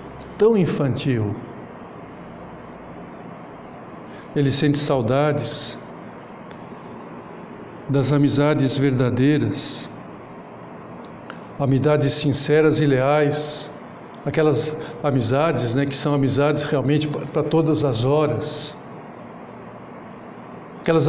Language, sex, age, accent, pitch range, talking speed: Portuguese, male, 60-79, Brazilian, 140-160 Hz, 70 wpm